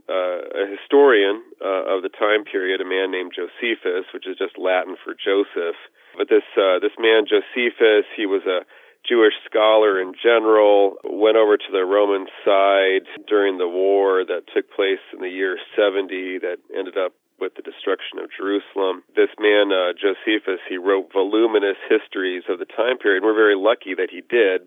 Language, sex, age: English, male, 40-59